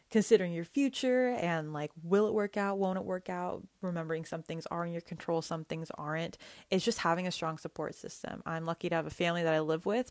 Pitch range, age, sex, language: 160-190 Hz, 20-39, female, English